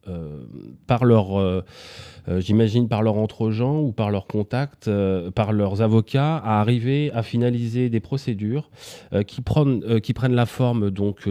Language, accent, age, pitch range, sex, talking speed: French, French, 30-49, 95-115 Hz, male, 170 wpm